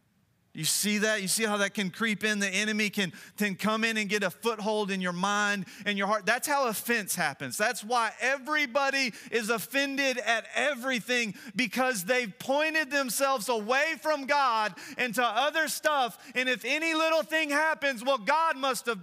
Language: English